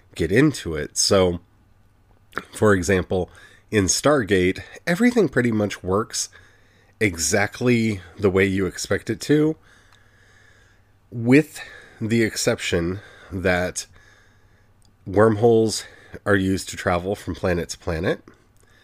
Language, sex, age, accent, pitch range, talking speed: English, male, 30-49, American, 95-115 Hz, 100 wpm